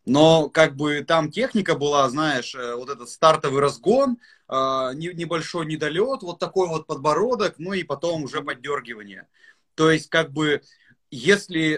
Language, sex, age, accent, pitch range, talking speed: Russian, male, 30-49, native, 140-180 Hz, 145 wpm